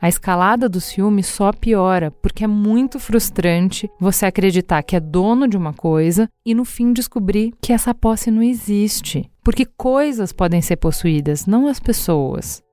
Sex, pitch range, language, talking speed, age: female, 175-220 Hz, Portuguese, 165 wpm, 30-49